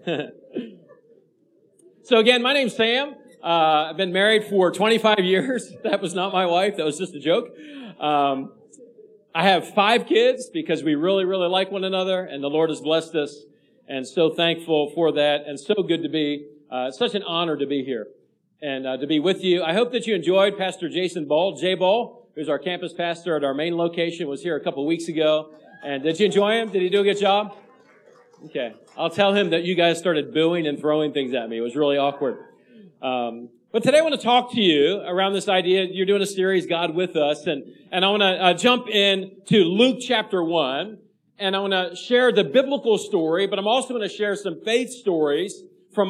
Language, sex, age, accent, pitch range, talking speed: English, male, 50-69, American, 160-210 Hz, 215 wpm